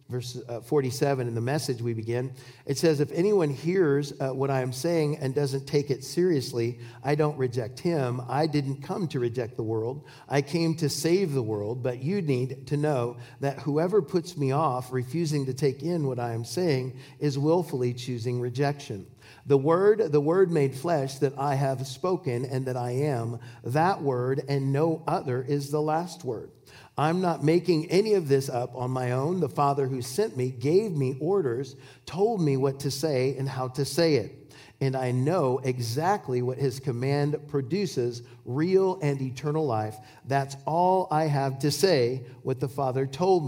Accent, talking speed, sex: American, 185 wpm, male